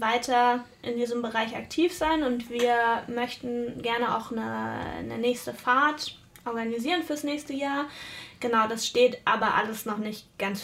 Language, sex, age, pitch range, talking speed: German, female, 20-39, 230-265 Hz, 150 wpm